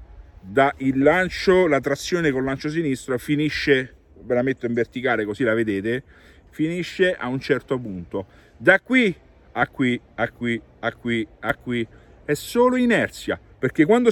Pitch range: 120-195 Hz